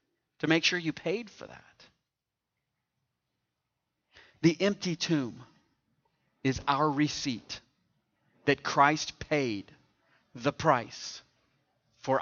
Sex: male